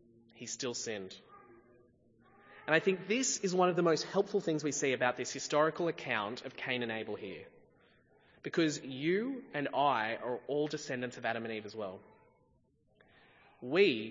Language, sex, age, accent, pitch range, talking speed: English, male, 20-39, Australian, 135-170 Hz, 165 wpm